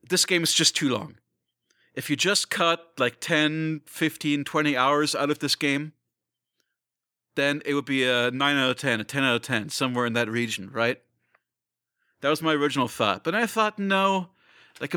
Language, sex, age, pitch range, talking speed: English, male, 40-59, 115-155 Hz, 190 wpm